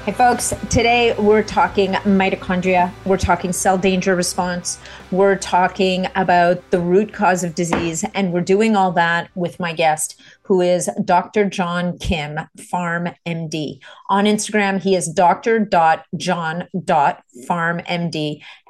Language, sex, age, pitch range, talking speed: English, female, 40-59, 175-200 Hz, 125 wpm